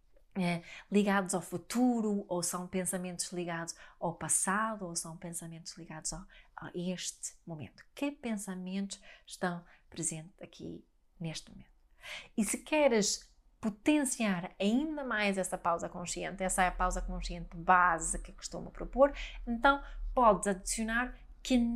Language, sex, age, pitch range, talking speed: Portuguese, female, 30-49, 175-225 Hz, 130 wpm